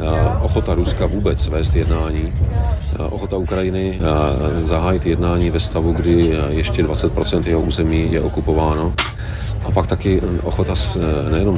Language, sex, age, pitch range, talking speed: Czech, male, 40-59, 80-95 Hz, 120 wpm